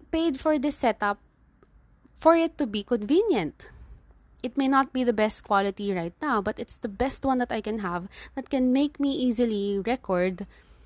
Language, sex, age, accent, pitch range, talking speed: English, female, 20-39, Filipino, 205-295 Hz, 180 wpm